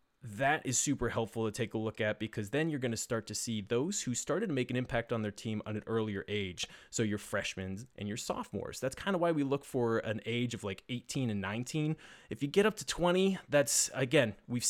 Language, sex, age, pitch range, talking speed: English, male, 20-39, 110-140 Hz, 245 wpm